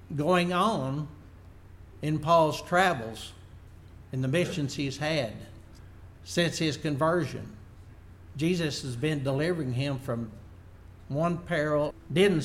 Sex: male